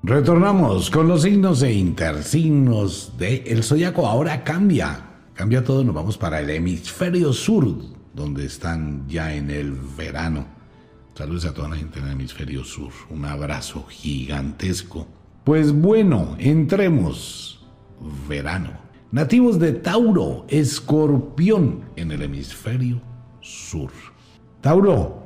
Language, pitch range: Spanish, 85-135 Hz